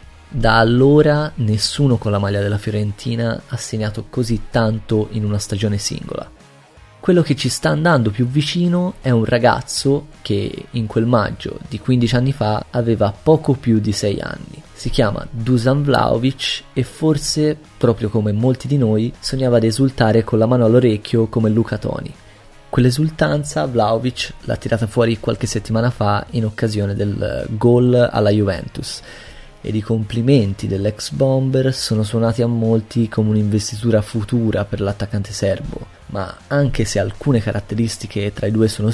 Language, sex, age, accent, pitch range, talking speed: Italian, male, 20-39, native, 105-125 Hz, 155 wpm